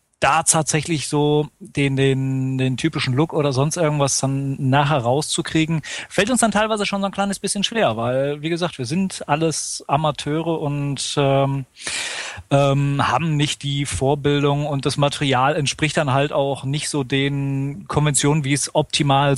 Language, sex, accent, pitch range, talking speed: German, male, German, 125-150 Hz, 160 wpm